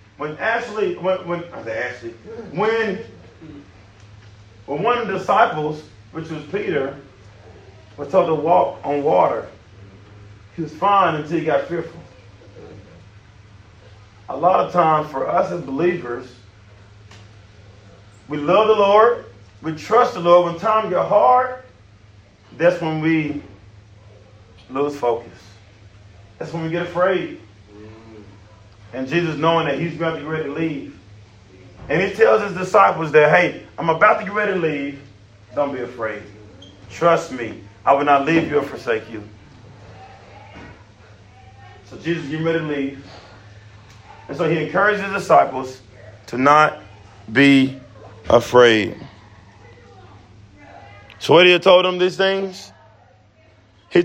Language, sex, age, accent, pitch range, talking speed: English, male, 30-49, American, 105-165 Hz, 130 wpm